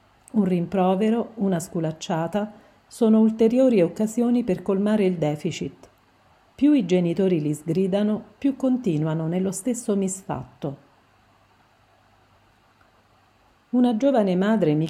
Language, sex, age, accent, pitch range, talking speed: Italian, female, 50-69, native, 150-195 Hz, 100 wpm